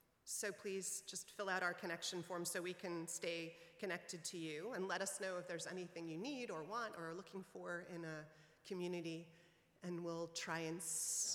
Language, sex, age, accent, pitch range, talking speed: English, female, 30-49, American, 170-200 Hz, 195 wpm